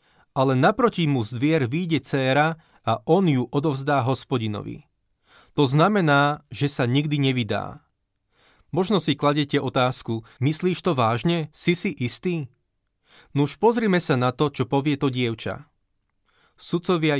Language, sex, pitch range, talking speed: Slovak, male, 120-160 Hz, 130 wpm